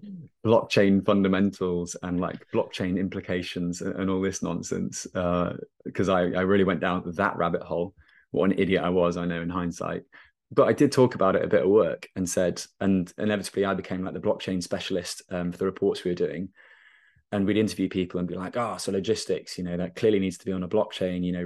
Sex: male